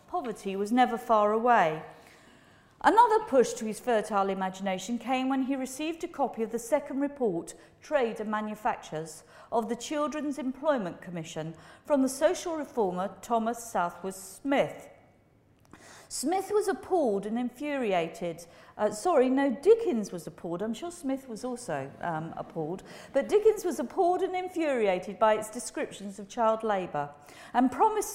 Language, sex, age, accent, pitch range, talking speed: English, female, 50-69, British, 200-305 Hz, 145 wpm